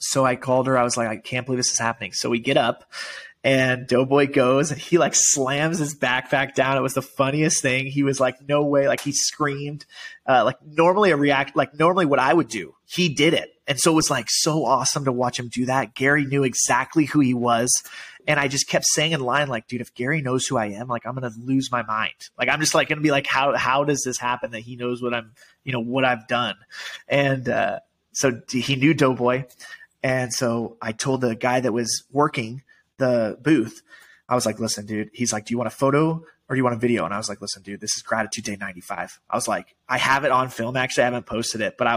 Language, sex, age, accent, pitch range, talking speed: English, male, 20-39, American, 120-140 Hz, 255 wpm